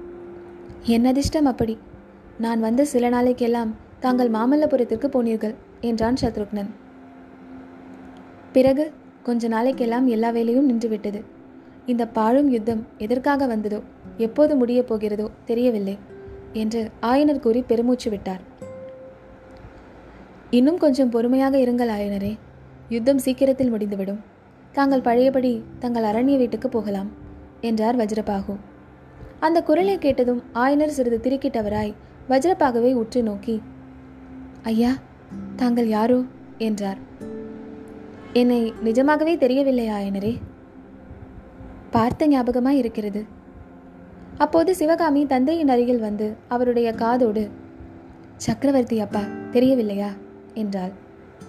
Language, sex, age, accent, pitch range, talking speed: Tamil, female, 20-39, native, 210-265 Hz, 90 wpm